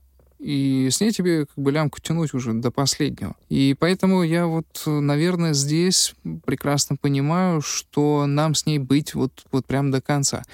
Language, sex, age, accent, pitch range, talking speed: Russian, male, 20-39, native, 125-160 Hz, 165 wpm